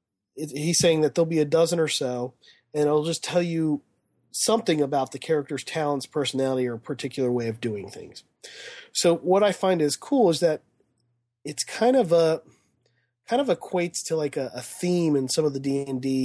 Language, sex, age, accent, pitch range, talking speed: English, male, 30-49, American, 130-170 Hz, 195 wpm